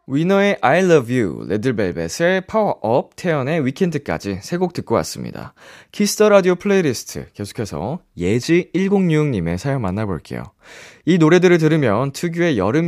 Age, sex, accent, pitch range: 20-39, male, native, 95-155 Hz